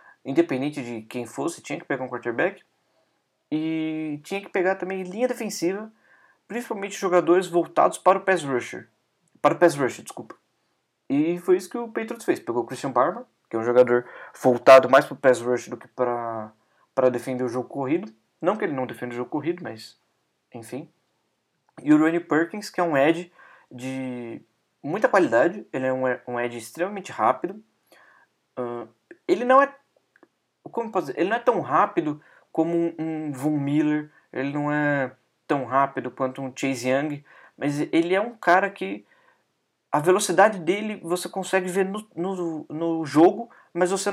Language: Portuguese